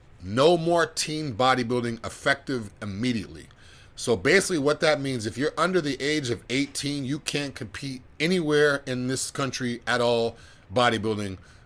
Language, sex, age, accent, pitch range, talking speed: English, male, 40-59, American, 110-135 Hz, 145 wpm